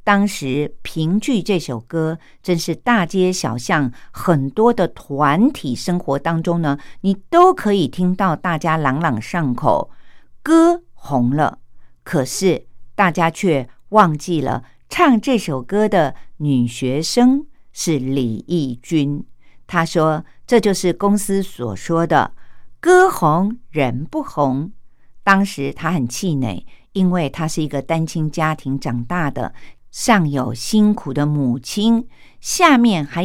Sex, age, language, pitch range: female, 50-69, Japanese, 145-200 Hz